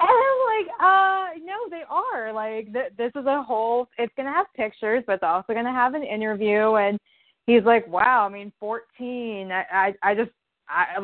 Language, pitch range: English, 200-285 Hz